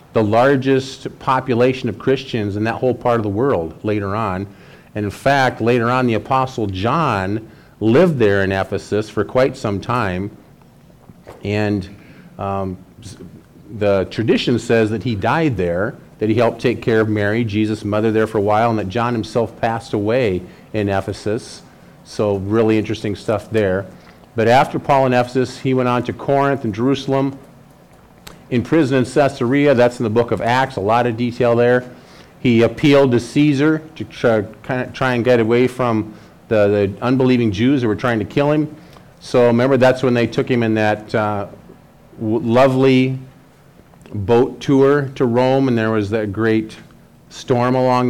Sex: male